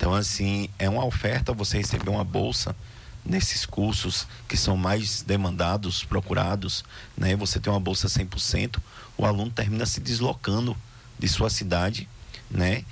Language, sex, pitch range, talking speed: Portuguese, male, 95-115 Hz, 145 wpm